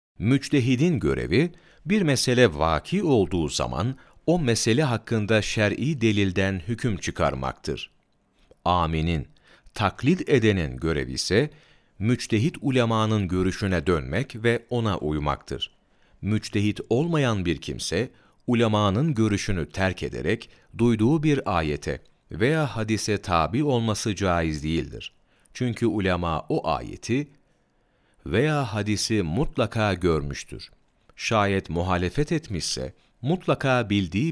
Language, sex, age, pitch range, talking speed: Turkish, male, 40-59, 90-125 Hz, 100 wpm